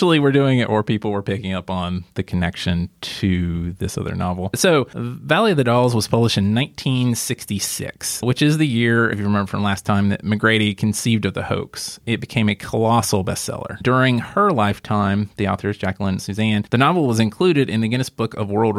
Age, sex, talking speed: 30-49, male, 205 wpm